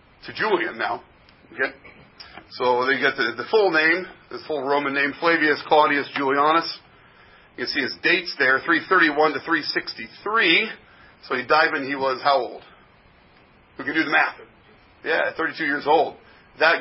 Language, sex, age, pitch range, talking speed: English, male, 40-59, 125-165 Hz, 160 wpm